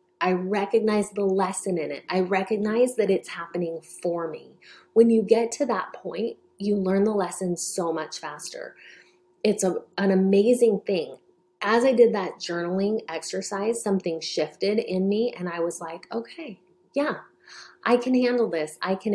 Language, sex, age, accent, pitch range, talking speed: English, female, 30-49, American, 175-225 Hz, 165 wpm